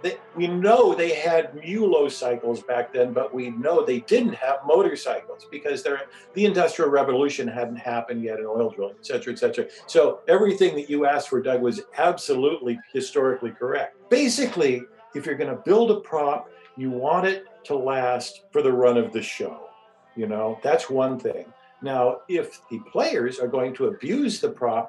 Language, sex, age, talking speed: English, male, 50-69, 180 wpm